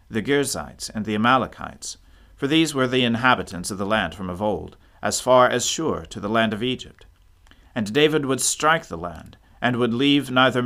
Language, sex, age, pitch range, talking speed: English, male, 40-59, 90-125 Hz, 195 wpm